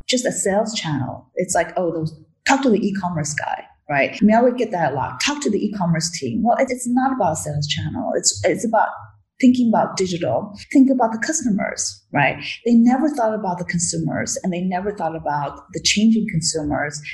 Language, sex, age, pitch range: Chinese, female, 30-49, 160-210 Hz